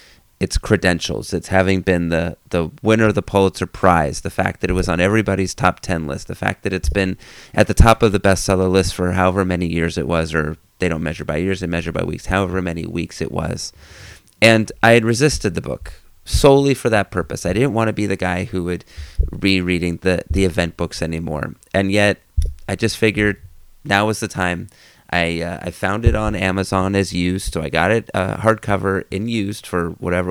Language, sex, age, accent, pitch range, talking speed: English, male, 30-49, American, 85-100 Hz, 215 wpm